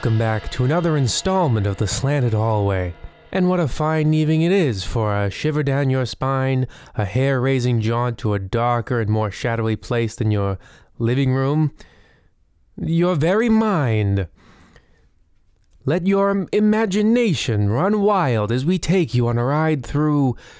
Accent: American